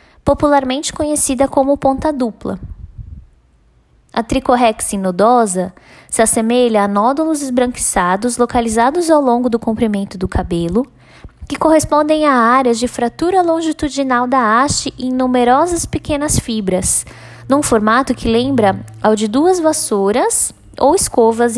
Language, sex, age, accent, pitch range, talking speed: Portuguese, female, 10-29, Brazilian, 195-270 Hz, 120 wpm